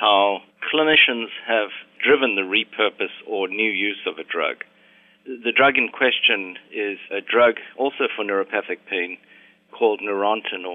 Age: 50-69